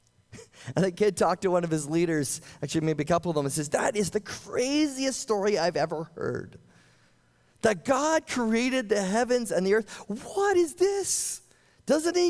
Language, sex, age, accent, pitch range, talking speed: English, male, 30-49, American, 105-175 Hz, 185 wpm